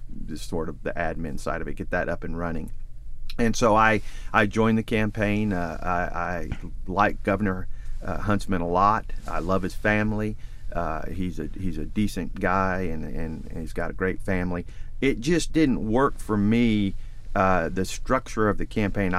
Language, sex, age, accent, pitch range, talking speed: English, male, 40-59, American, 85-105 Hz, 180 wpm